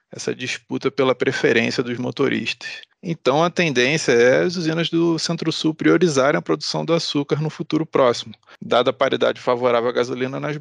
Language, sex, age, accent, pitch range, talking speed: English, male, 20-39, Brazilian, 130-160 Hz, 165 wpm